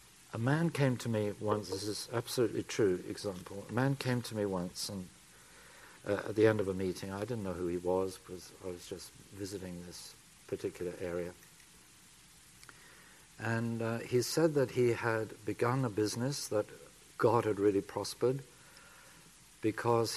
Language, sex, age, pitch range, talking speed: English, male, 50-69, 95-115 Hz, 165 wpm